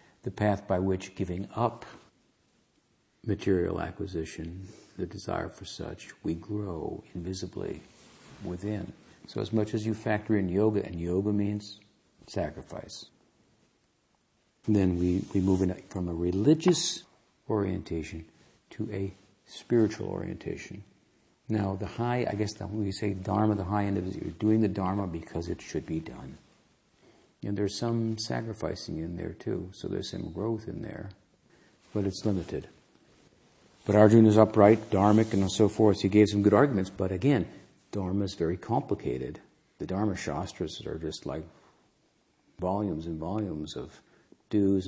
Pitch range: 95-105 Hz